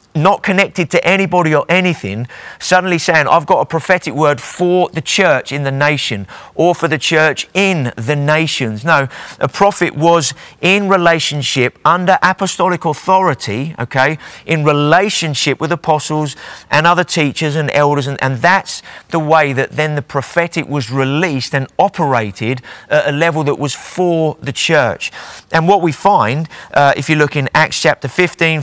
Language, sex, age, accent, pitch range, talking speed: English, male, 30-49, British, 130-165 Hz, 165 wpm